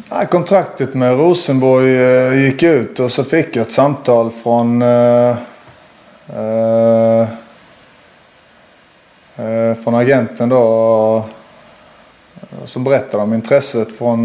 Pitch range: 115-130 Hz